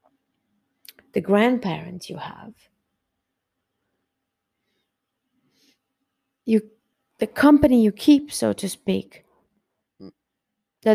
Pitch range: 185-220 Hz